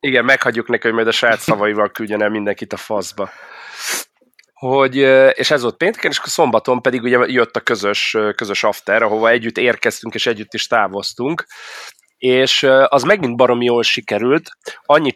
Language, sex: Hungarian, male